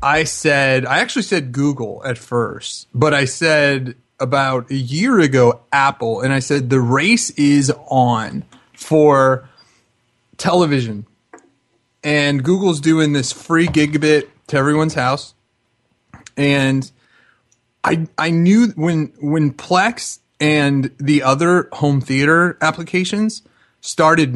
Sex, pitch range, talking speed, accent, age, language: male, 130-160 Hz, 120 wpm, American, 30-49, English